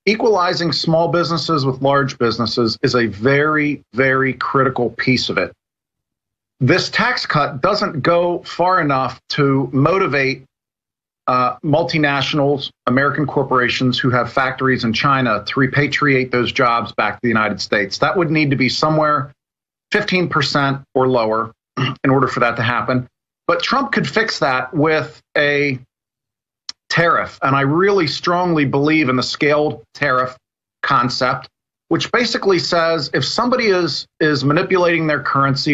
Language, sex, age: English, male, 40-59